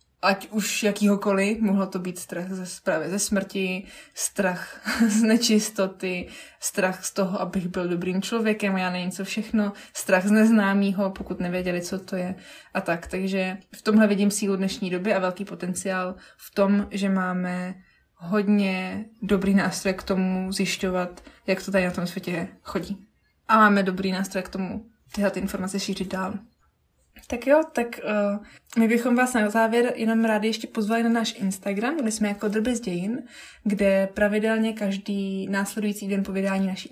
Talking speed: 160 wpm